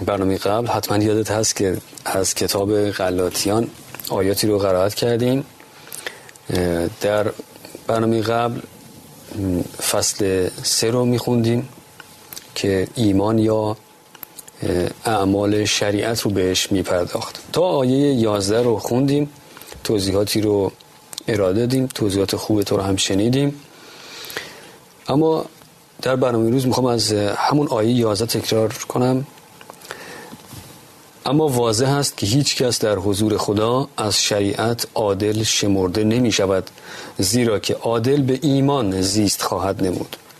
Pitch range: 105-125 Hz